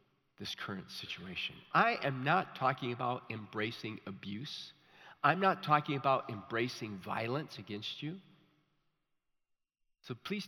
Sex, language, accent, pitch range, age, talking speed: male, English, American, 135-205 Hz, 50-69, 115 wpm